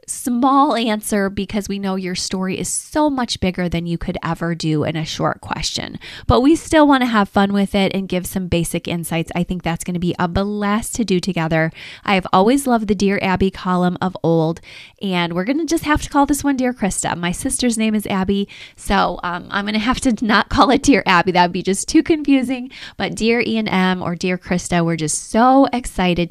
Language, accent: English, American